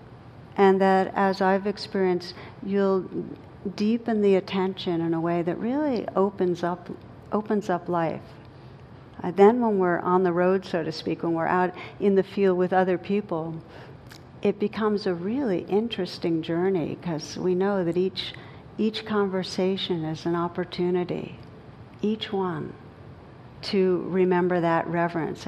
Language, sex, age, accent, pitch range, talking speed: English, female, 60-79, American, 165-195 Hz, 140 wpm